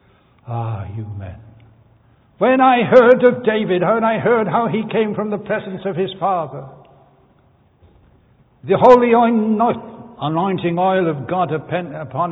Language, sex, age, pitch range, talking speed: English, male, 60-79, 130-165 Hz, 130 wpm